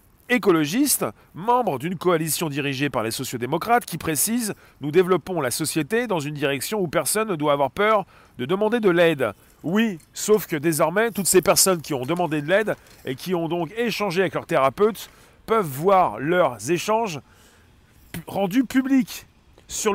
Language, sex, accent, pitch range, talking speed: French, male, French, 140-195 Hz, 170 wpm